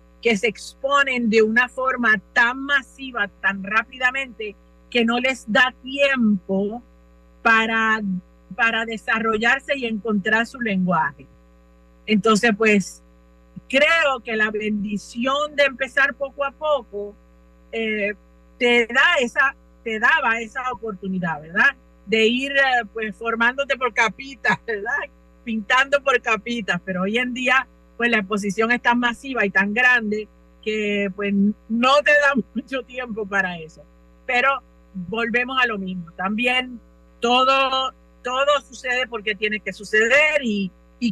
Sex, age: female, 50-69